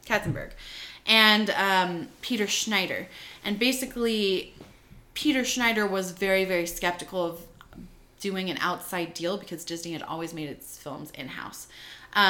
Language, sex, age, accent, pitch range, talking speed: English, female, 20-39, American, 170-235 Hz, 125 wpm